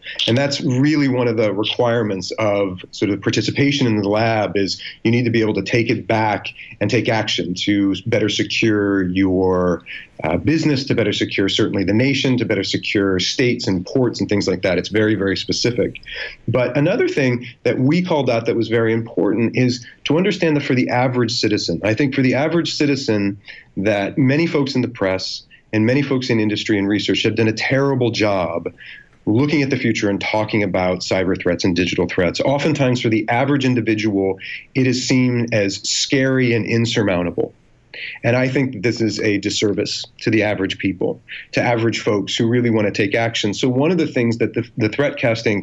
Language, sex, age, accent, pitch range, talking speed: English, male, 30-49, American, 105-130 Hz, 195 wpm